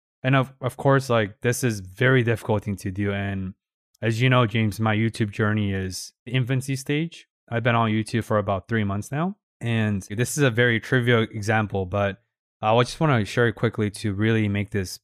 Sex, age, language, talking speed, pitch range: male, 20-39, English, 210 wpm, 100-125 Hz